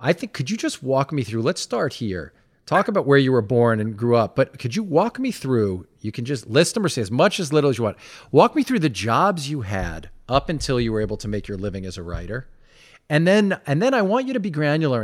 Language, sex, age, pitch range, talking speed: English, male, 40-59, 110-145 Hz, 275 wpm